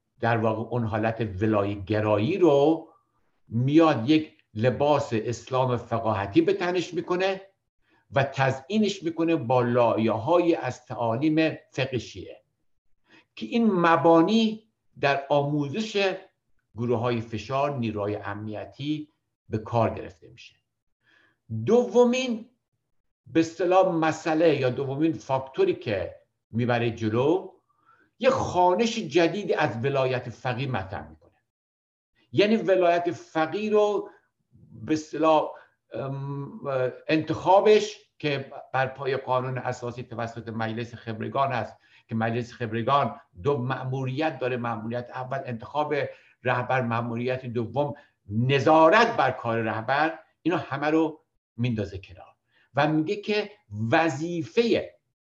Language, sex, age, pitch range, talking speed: Persian, male, 60-79, 115-160 Hz, 105 wpm